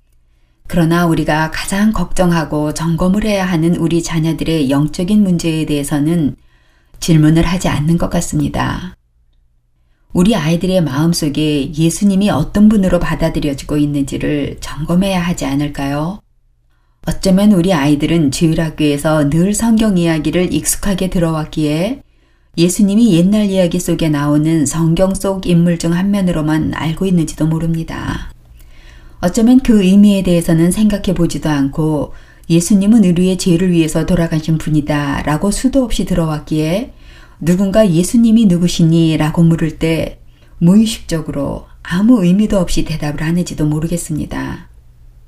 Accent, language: native, Korean